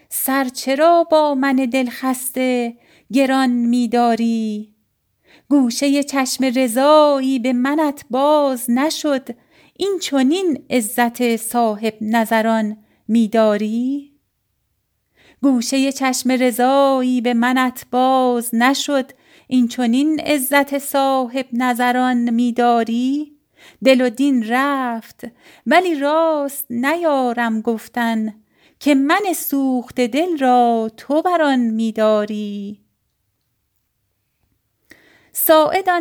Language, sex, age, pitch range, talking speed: Persian, female, 40-59, 230-275 Hz, 90 wpm